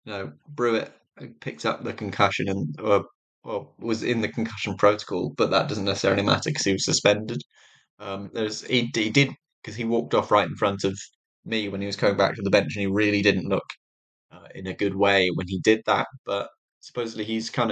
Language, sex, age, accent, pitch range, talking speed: English, male, 10-29, British, 100-115 Hz, 215 wpm